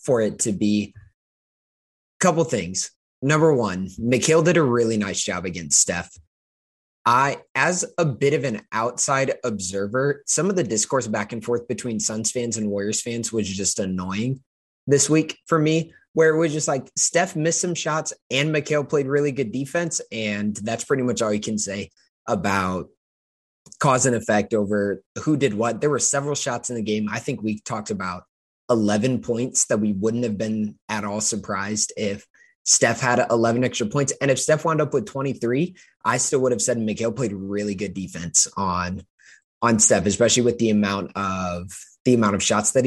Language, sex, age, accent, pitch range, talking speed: English, male, 20-39, American, 105-140 Hz, 190 wpm